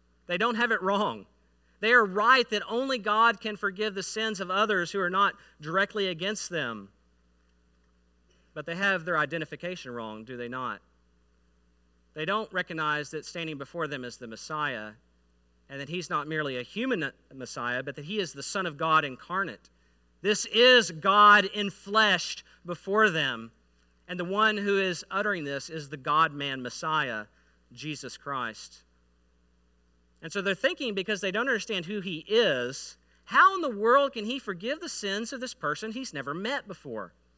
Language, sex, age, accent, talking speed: English, male, 50-69, American, 170 wpm